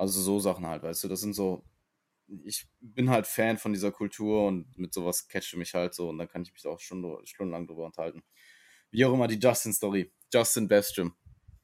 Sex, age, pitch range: male, 20-39, 95-115 Hz